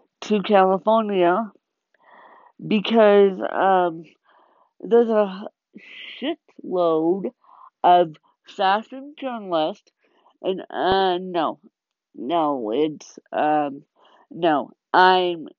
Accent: American